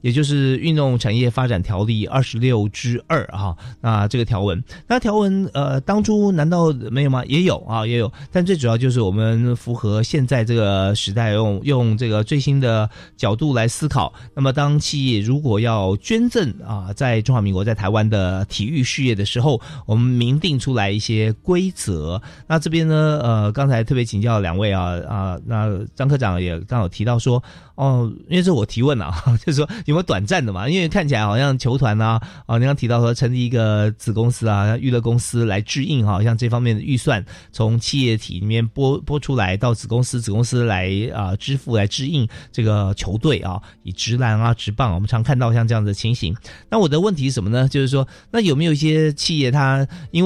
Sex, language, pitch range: male, Chinese, 110-140 Hz